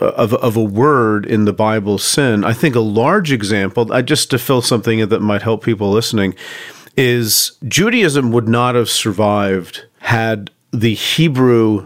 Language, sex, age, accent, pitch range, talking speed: English, male, 40-59, American, 105-120 Hz, 165 wpm